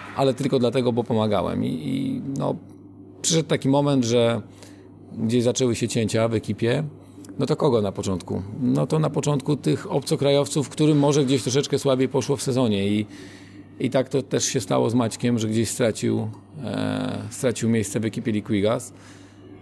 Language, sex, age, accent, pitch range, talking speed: Polish, male, 40-59, native, 100-130 Hz, 170 wpm